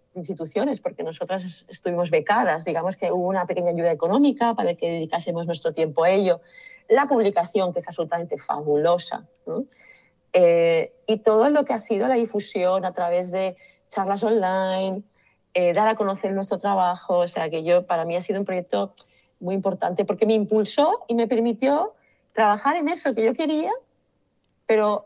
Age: 30-49